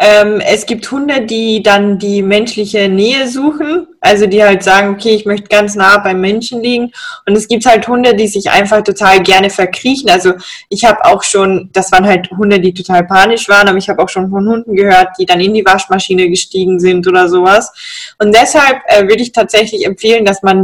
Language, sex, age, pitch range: German, female, 20-39, 195-235 Hz